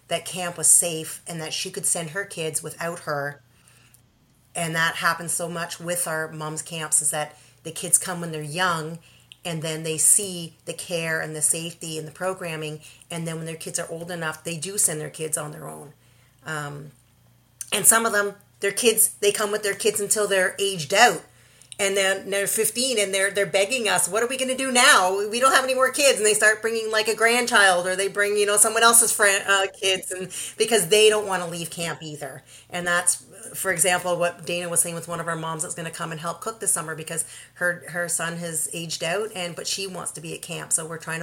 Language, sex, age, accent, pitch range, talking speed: English, female, 40-59, American, 155-195 Hz, 235 wpm